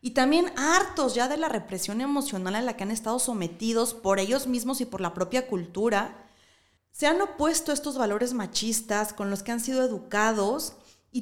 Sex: female